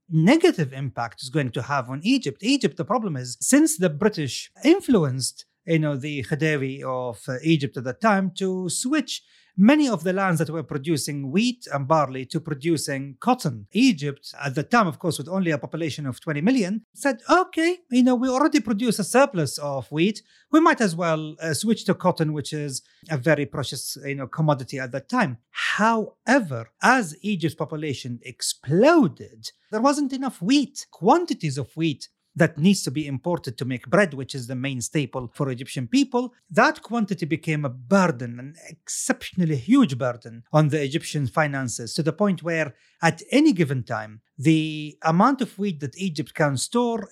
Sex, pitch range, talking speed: male, 140-215 Hz, 175 wpm